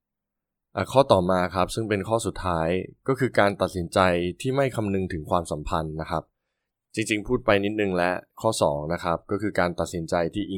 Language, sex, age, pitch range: Thai, male, 20-39, 85-105 Hz